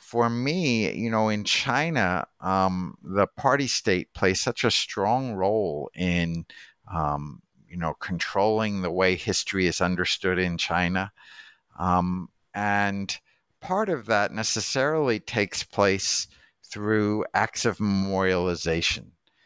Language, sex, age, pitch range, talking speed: English, male, 50-69, 90-105 Hz, 120 wpm